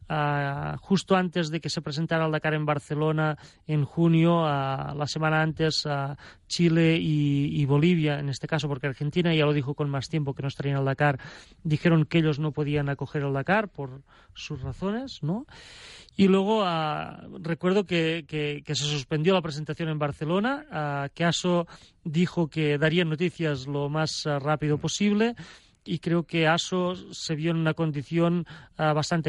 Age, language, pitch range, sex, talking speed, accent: 30-49, Spanish, 150-170 Hz, male, 180 wpm, Spanish